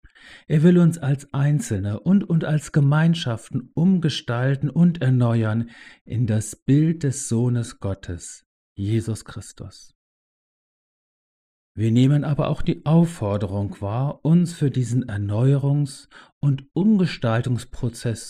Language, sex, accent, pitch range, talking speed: German, male, German, 110-155 Hz, 110 wpm